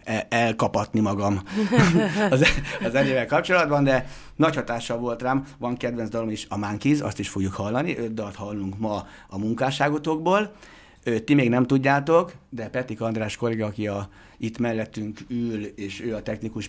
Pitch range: 105-135 Hz